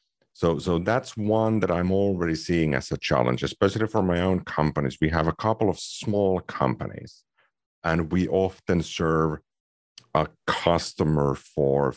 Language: English